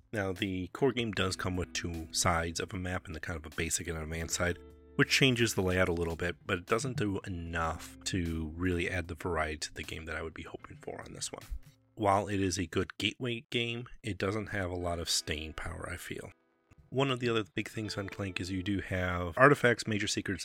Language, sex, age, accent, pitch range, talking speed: English, male, 30-49, American, 90-110 Hz, 240 wpm